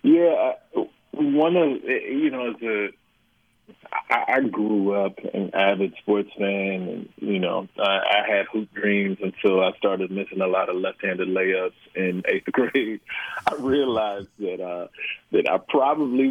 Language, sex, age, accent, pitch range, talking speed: English, male, 30-49, American, 95-115 Hz, 150 wpm